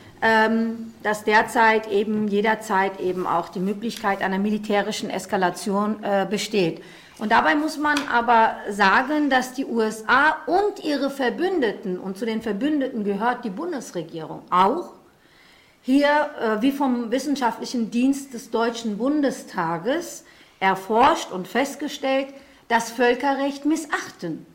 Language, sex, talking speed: German, female, 120 wpm